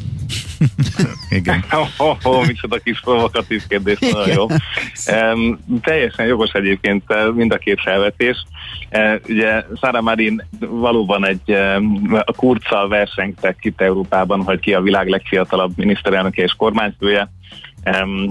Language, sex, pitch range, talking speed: Hungarian, male, 95-110 Hz, 125 wpm